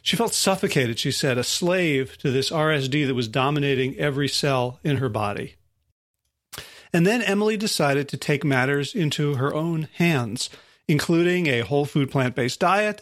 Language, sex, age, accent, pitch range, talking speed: English, male, 40-59, American, 140-185 Hz, 160 wpm